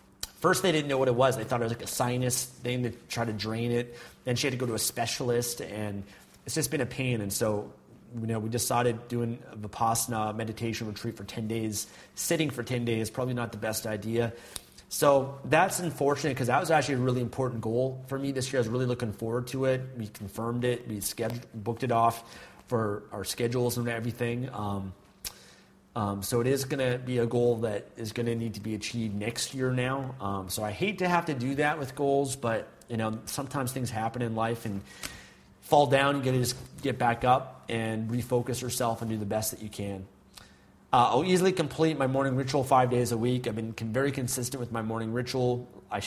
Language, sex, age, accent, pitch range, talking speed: English, male, 30-49, American, 110-130 Hz, 220 wpm